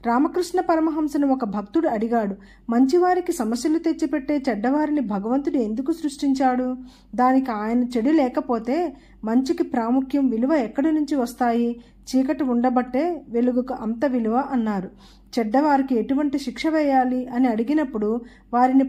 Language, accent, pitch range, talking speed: Telugu, native, 230-290 Hz, 110 wpm